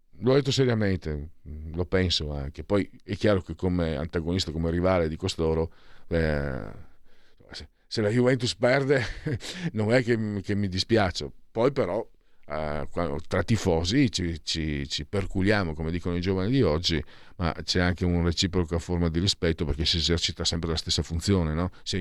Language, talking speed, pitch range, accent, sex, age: Italian, 160 wpm, 80-100 Hz, native, male, 50-69